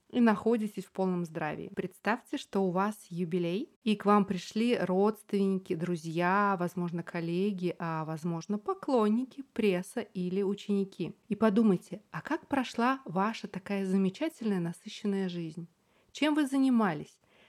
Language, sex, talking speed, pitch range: Russian, female, 125 wpm, 185-230 Hz